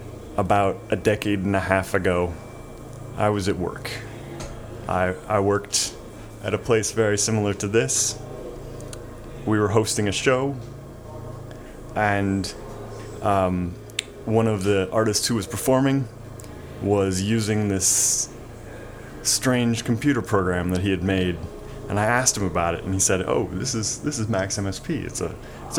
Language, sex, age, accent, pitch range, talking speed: English, male, 30-49, American, 100-120 Hz, 150 wpm